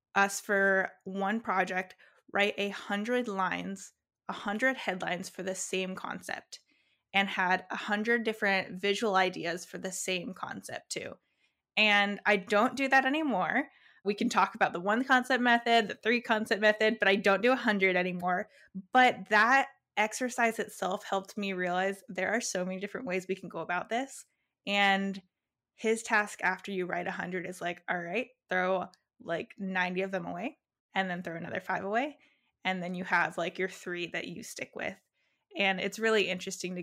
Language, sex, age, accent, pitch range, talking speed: English, female, 20-39, American, 185-220 Hz, 180 wpm